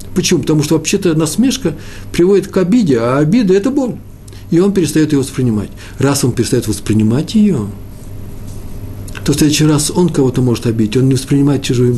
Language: Russian